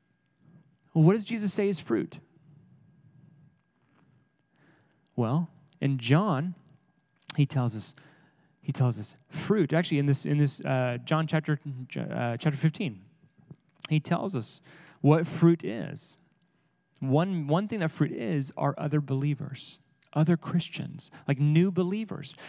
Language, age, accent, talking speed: English, 30-49, American, 130 wpm